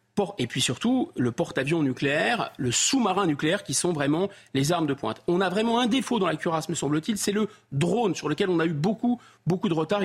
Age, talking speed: 40-59, 225 wpm